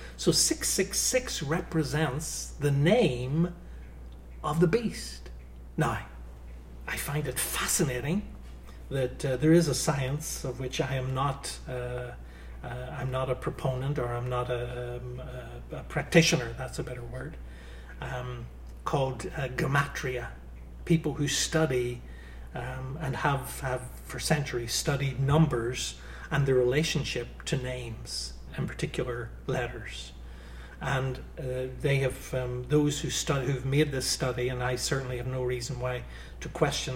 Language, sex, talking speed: English, male, 135 wpm